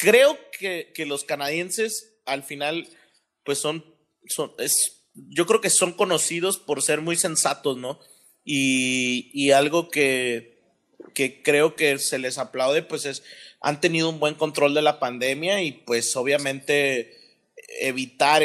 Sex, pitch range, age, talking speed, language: male, 130-160 Hz, 30-49, 145 wpm, Spanish